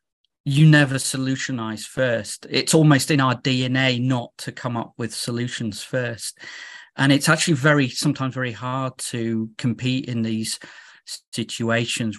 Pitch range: 110-135 Hz